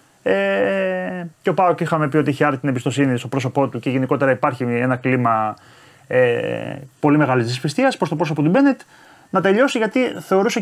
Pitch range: 140-195 Hz